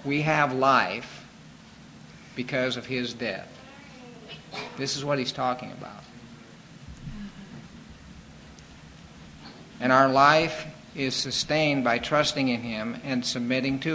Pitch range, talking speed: 120-140 Hz, 110 wpm